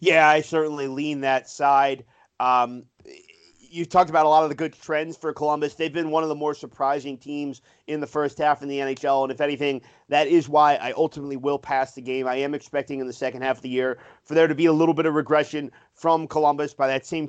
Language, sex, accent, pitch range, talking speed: English, male, American, 135-160 Hz, 240 wpm